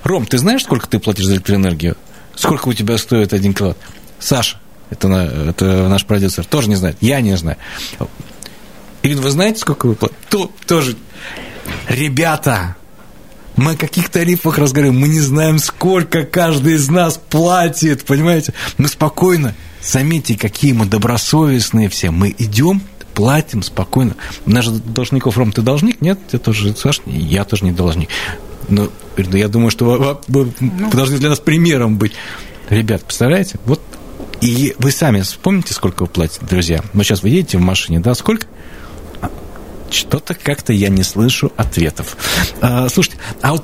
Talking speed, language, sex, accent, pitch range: 160 wpm, Russian, male, native, 95-145 Hz